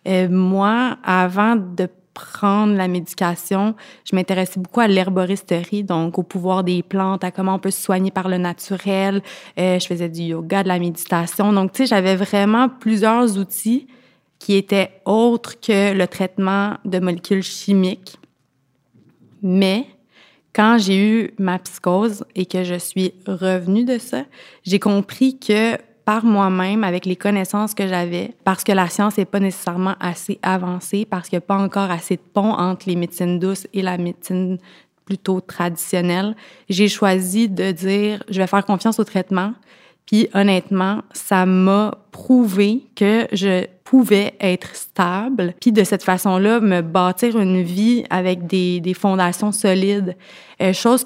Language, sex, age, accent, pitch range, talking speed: French, female, 30-49, Canadian, 185-210 Hz, 160 wpm